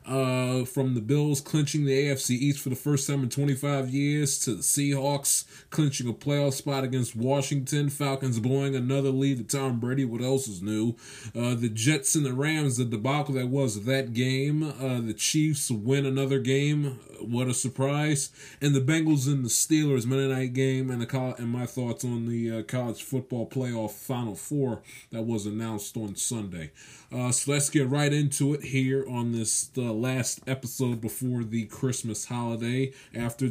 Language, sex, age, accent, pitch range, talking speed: English, male, 20-39, American, 115-135 Hz, 180 wpm